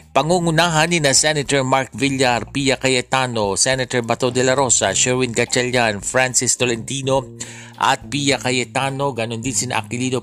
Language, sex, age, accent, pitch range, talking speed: Filipino, male, 50-69, native, 120-135 Hz, 135 wpm